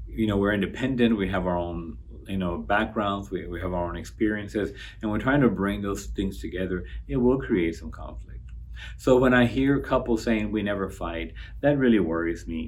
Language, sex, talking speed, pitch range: English, male, 205 wpm, 90-120 Hz